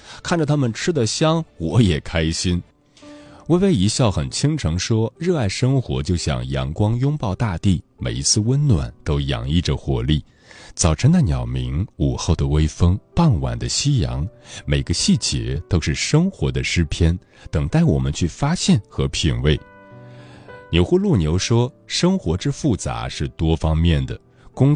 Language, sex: Chinese, male